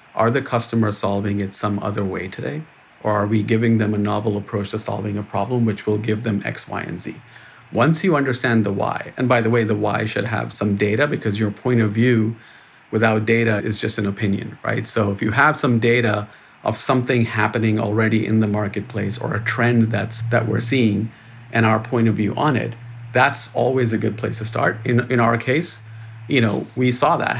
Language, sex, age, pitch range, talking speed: English, male, 40-59, 110-120 Hz, 215 wpm